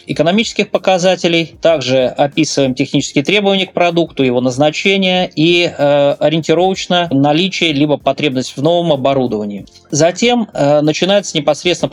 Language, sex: Russian, male